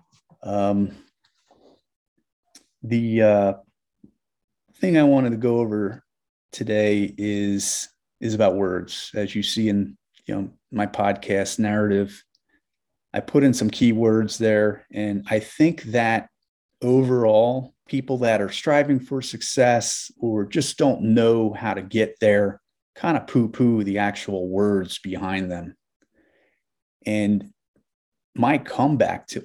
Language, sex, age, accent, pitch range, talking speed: English, male, 30-49, American, 100-120 Hz, 125 wpm